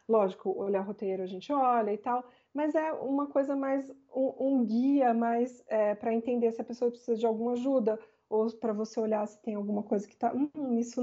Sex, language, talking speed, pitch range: female, Portuguese, 220 wpm, 200-240 Hz